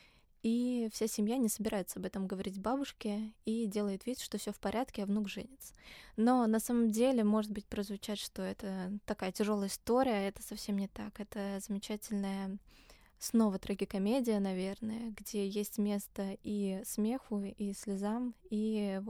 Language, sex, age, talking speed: Russian, female, 20-39, 155 wpm